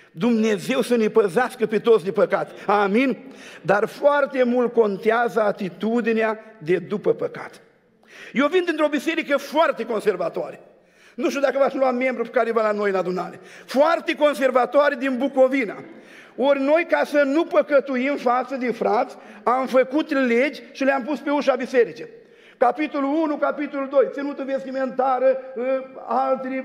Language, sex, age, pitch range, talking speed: Romanian, male, 50-69, 220-280 Hz, 145 wpm